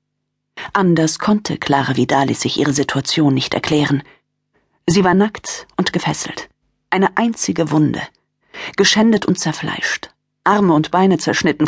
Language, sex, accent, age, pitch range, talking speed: German, female, German, 40-59, 150-190 Hz, 125 wpm